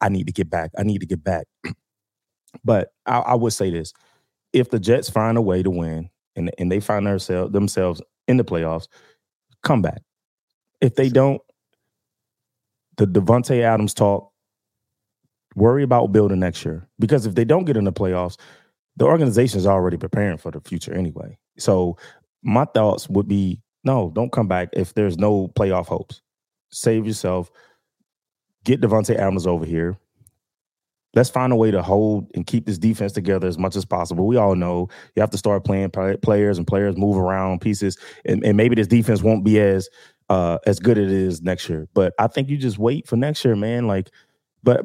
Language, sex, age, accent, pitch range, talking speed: English, male, 20-39, American, 95-115 Hz, 190 wpm